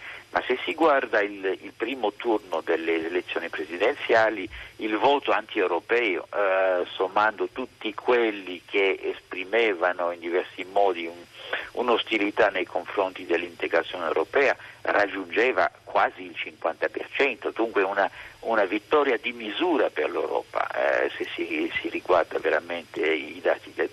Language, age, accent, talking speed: Italian, 50-69, native, 120 wpm